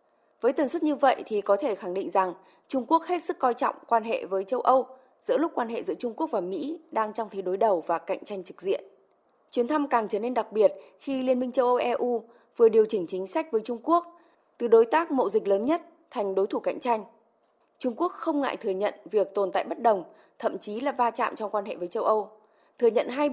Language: Vietnamese